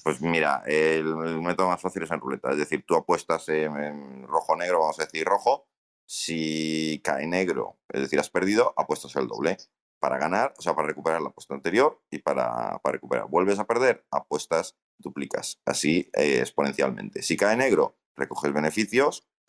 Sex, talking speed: male, 170 wpm